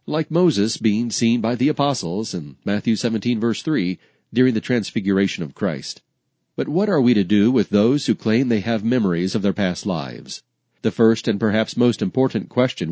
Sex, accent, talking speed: male, American, 190 wpm